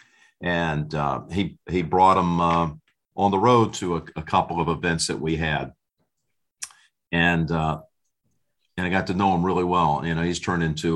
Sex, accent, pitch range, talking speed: male, American, 80-90 Hz, 185 wpm